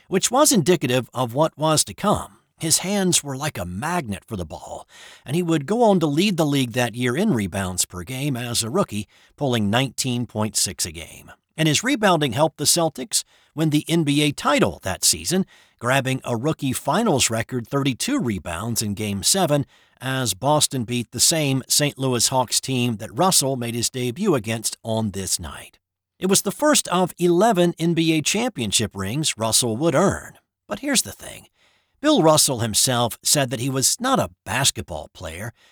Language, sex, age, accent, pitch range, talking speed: English, male, 50-69, American, 110-155 Hz, 180 wpm